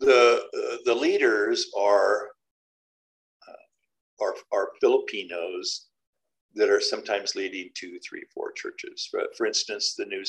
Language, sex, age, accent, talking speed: English, male, 50-69, American, 130 wpm